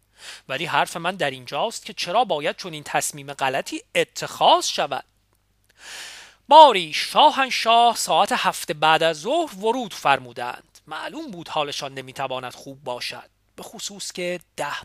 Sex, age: male, 40-59